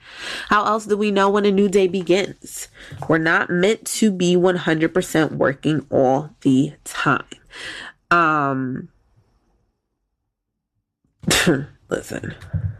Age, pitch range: 20-39, 140-185 Hz